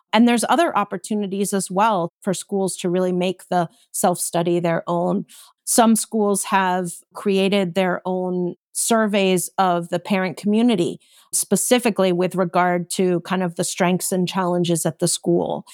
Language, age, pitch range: English, 40-59, 180-215 Hz